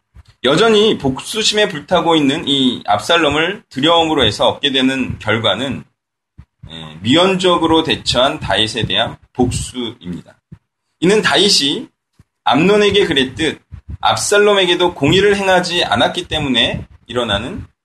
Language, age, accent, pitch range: Korean, 30-49, native, 130-200 Hz